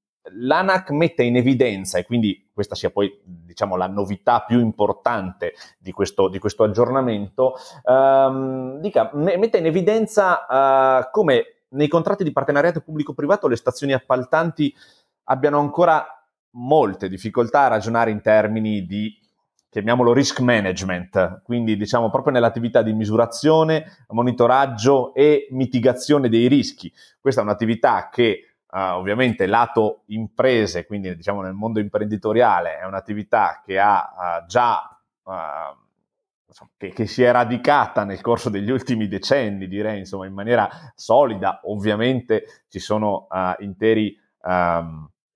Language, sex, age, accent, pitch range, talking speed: Italian, male, 30-49, native, 100-135 Hz, 130 wpm